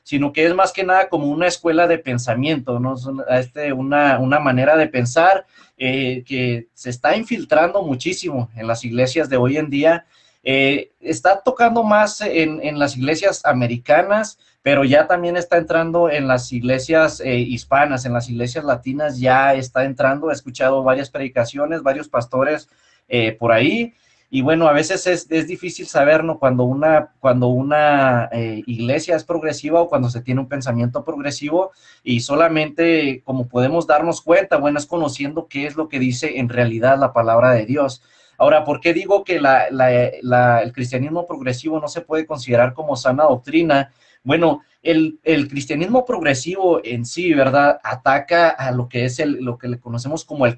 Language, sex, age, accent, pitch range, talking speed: English, male, 30-49, Mexican, 125-160 Hz, 175 wpm